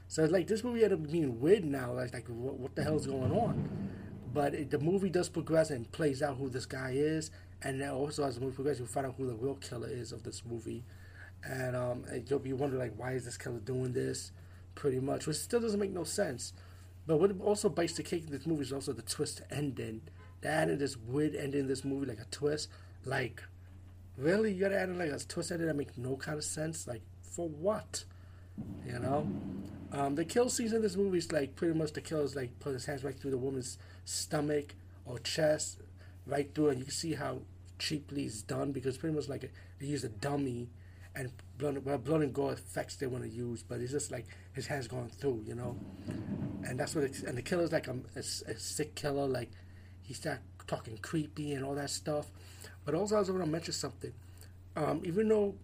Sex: male